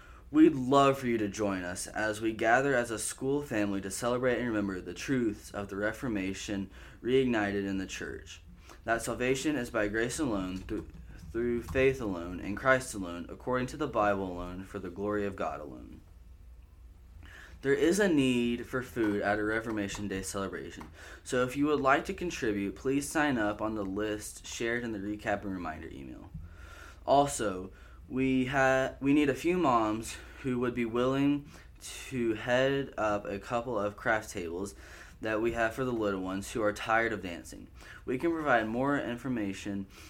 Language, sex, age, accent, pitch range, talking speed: English, male, 10-29, American, 95-125 Hz, 175 wpm